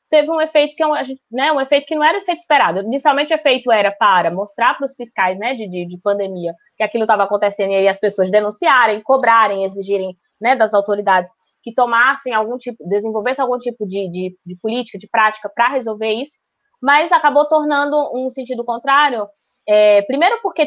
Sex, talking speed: female, 195 wpm